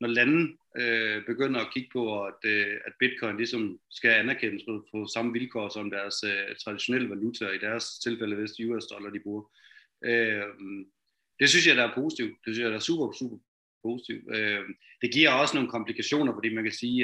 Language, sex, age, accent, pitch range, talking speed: Danish, male, 30-49, native, 105-130 Hz, 195 wpm